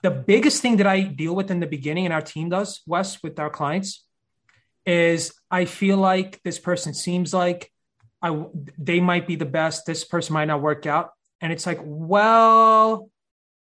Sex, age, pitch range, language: male, 30-49, 160-210 Hz, English